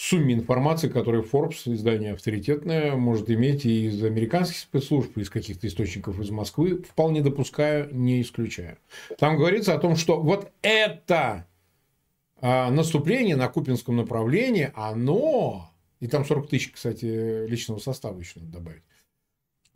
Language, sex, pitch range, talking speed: Russian, male, 110-165 Hz, 135 wpm